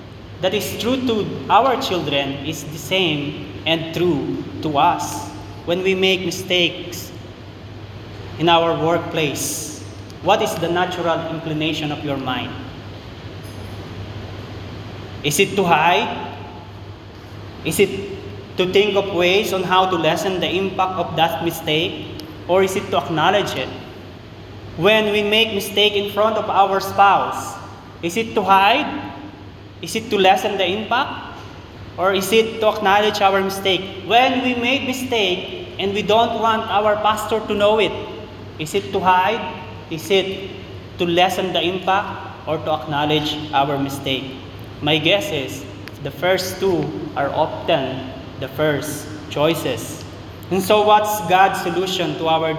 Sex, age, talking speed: male, 20-39, 145 wpm